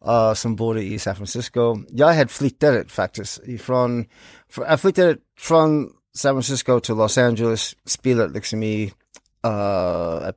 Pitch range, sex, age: 110-140 Hz, male, 30-49